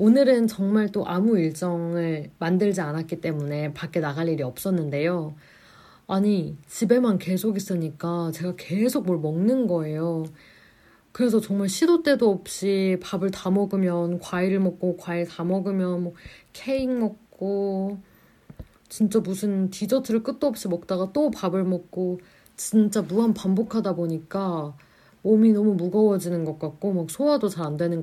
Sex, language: female, Korean